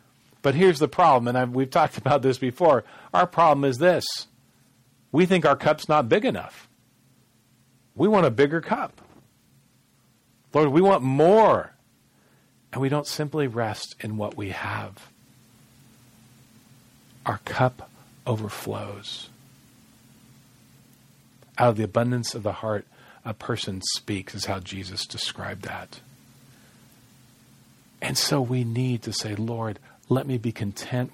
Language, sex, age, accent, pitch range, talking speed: English, male, 40-59, American, 105-130 Hz, 130 wpm